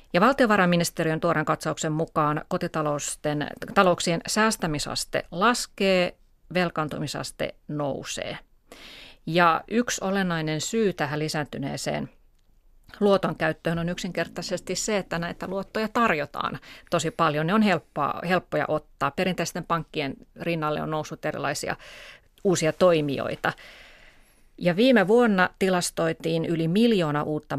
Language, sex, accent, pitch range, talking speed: Finnish, female, native, 155-190 Hz, 95 wpm